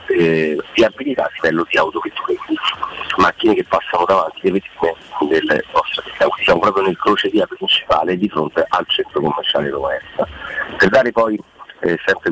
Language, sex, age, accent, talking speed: Italian, male, 40-59, native, 170 wpm